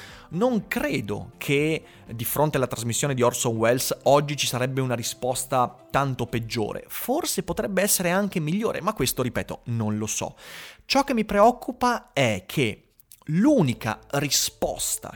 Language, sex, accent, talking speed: Italian, male, native, 145 wpm